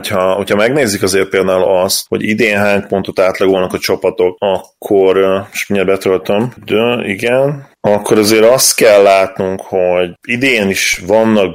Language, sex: Hungarian, male